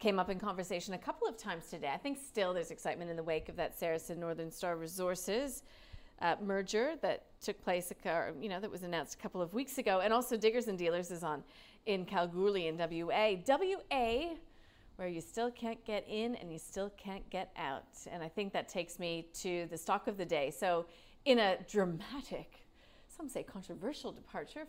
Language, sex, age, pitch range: English, female, 40-59, 175-230 Hz